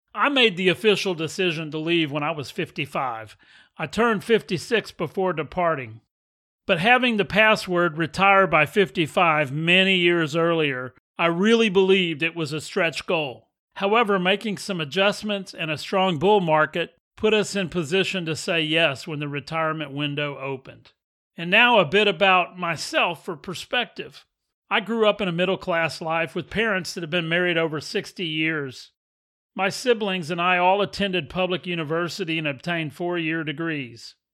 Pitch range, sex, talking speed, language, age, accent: 155-190 Hz, male, 160 wpm, English, 40-59, American